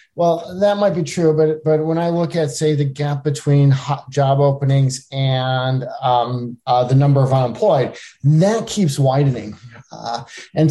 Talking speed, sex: 165 wpm, male